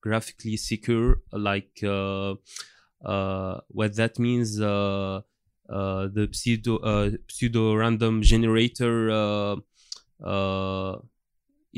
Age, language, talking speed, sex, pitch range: 20-39, English, 85 wpm, male, 105-115 Hz